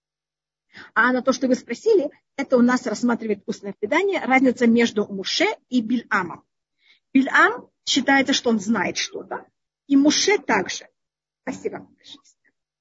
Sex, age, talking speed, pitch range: female, 40-59, 135 wpm, 235-305 Hz